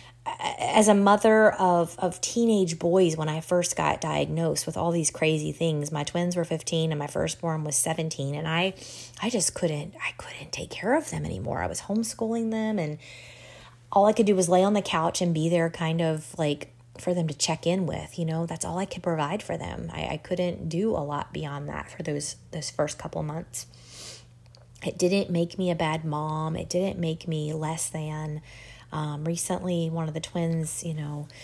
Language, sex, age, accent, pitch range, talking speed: English, female, 20-39, American, 150-175 Hz, 205 wpm